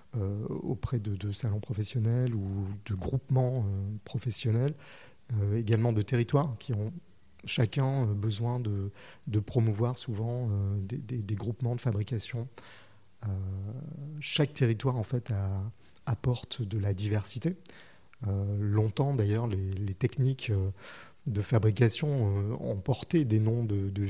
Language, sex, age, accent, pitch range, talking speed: French, male, 30-49, French, 105-130 Hz, 130 wpm